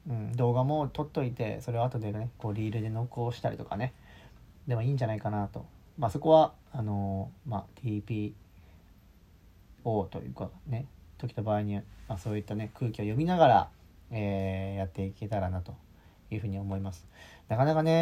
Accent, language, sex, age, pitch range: native, Japanese, male, 40-59, 95-130 Hz